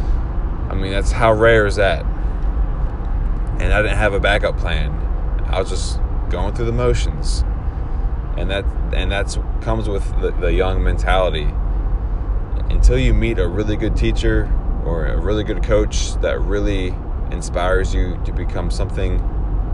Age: 20-39